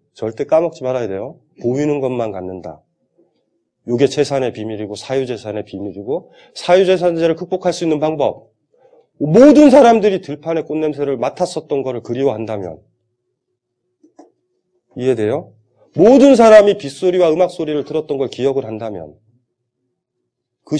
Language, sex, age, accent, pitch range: Korean, male, 30-49, native, 135-225 Hz